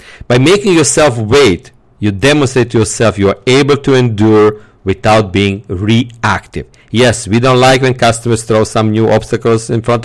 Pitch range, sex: 100-125 Hz, male